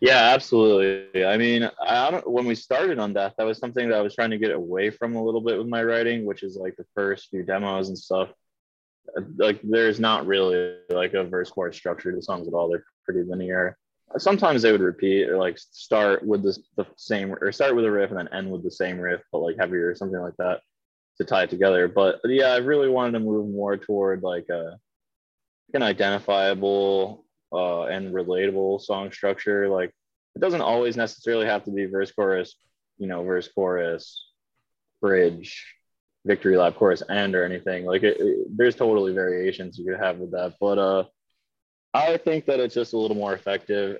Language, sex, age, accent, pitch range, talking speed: English, male, 20-39, American, 95-110 Hz, 200 wpm